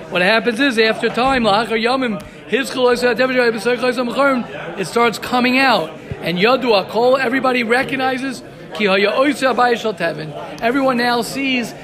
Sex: male